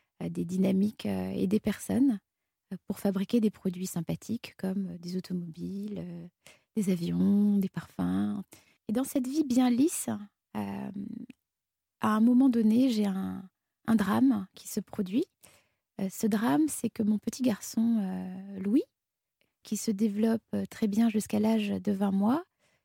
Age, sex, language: 20-39, female, French